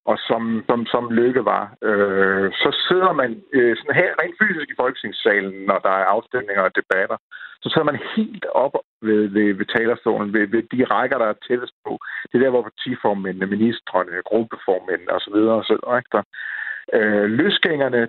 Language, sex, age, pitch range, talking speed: Danish, male, 60-79, 105-150 Hz, 165 wpm